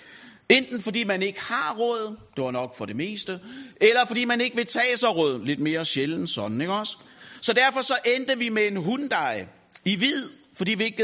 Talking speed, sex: 210 wpm, male